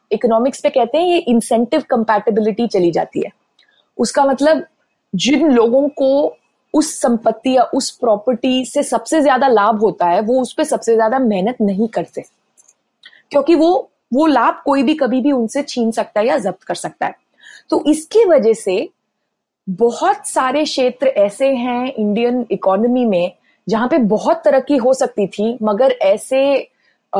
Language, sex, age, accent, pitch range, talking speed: Hindi, female, 20-39, native, 225-295 Hz, 160 wpm